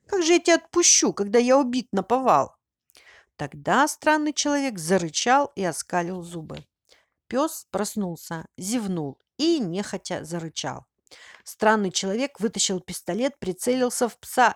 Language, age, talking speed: Russian, 50-69, 120 wpm